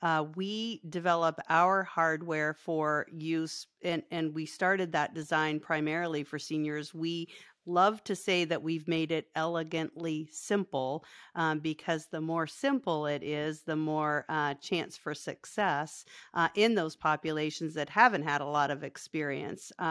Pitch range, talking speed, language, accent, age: 155-175 Hz, 150 wpm, English, American, 50-69